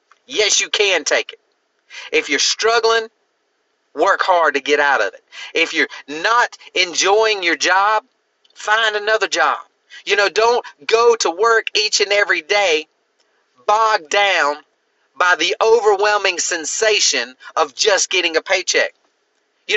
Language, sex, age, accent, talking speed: English, male, 40-59, American, 140 wpm